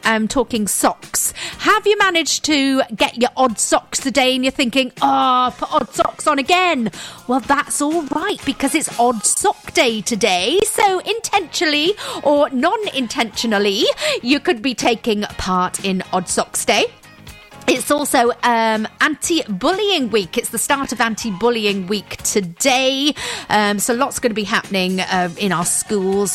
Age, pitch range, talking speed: 40-59, 200-305 Hz, 155 wpm